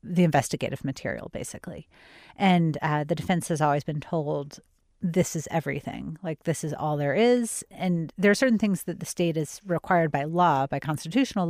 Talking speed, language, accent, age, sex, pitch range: 185 wpm, English, American, 30-49, female, 150-195 Hz